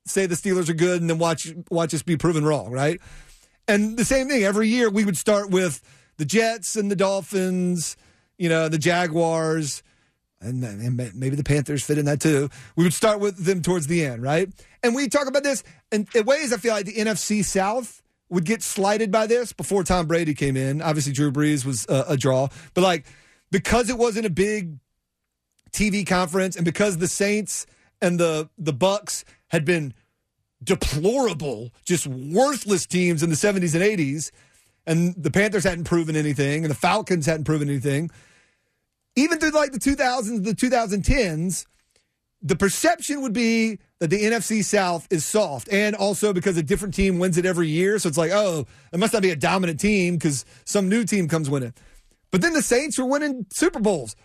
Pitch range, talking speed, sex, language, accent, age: 155-210 Hz, 195 wpm, male, English, American, 40-59